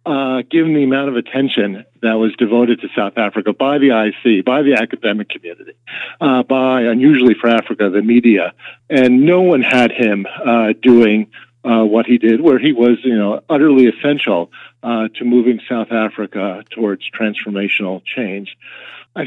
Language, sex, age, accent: English, male, 50-69, American